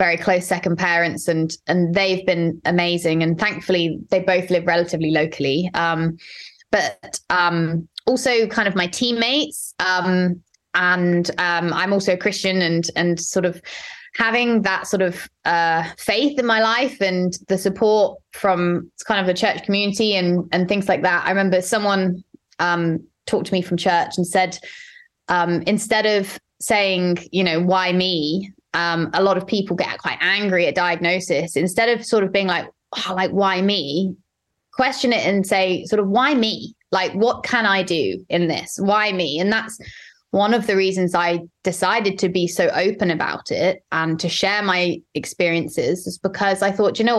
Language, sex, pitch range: English, female, 175-205 Hz